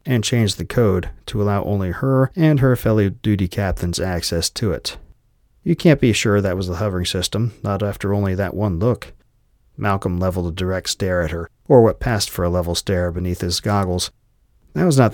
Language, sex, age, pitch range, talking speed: English, male, 40-59, 90-115 Hz, 200 wpm